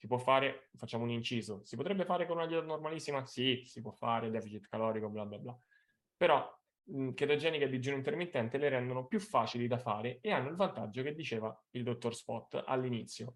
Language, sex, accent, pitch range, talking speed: Italian, male, native, 115-135 Hz, 195 wpm